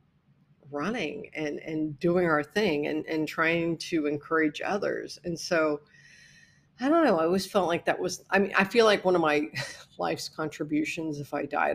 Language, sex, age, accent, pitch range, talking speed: English, female, 50-69, American, 150-180 Hz, 185 wpm